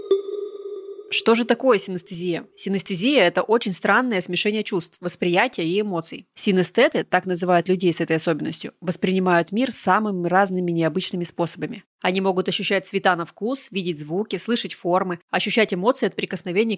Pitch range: 175-210 Hz